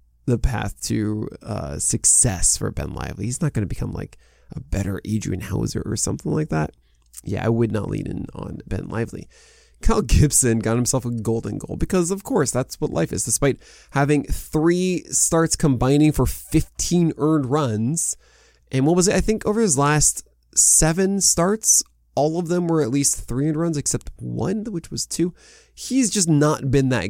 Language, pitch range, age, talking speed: English, 120-165 Hz, 20-39, 185 wpm